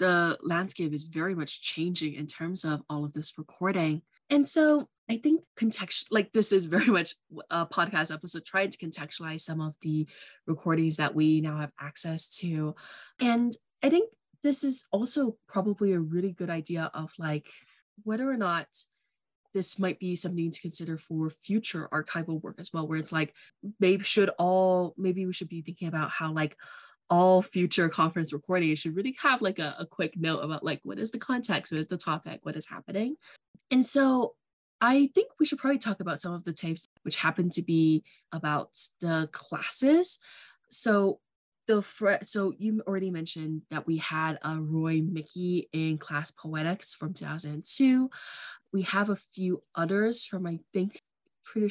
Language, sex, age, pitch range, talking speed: English, female, 20-39, 160-200 Hz, 175 wpm